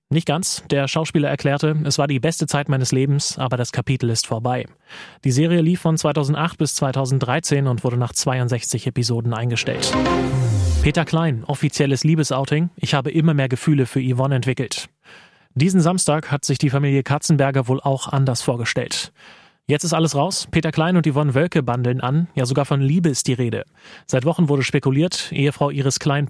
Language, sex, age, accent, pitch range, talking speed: German, male, 30-49, German, 130-155 Hz, 180 wpm